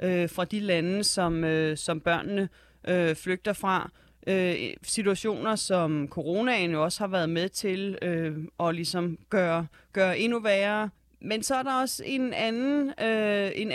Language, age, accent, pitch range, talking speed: Danish, 30-49, native, 175-215 Hz, 120 wpm